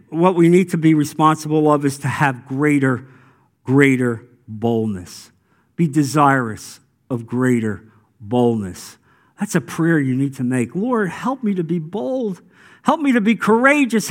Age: 50-69